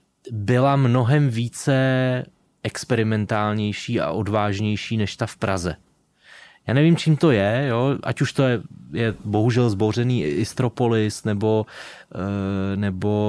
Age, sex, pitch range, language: 20-39, male, 105-120 Hz, Slovak